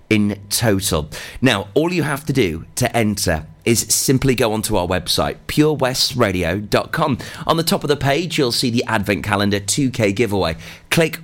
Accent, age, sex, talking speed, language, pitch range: British, 30-49, male, 165 wpm, English, 100-135 Hz